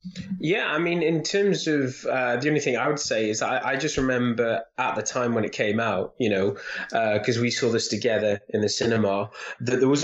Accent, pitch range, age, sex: British, 110-130 Hz, 20-39, male